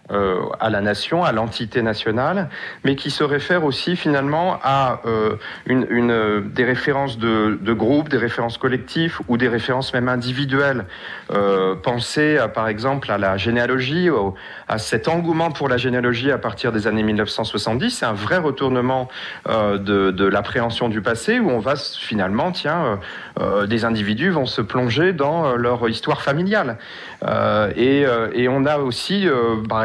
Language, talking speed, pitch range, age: French, 175 wpm, 115-155 Hz, 40-59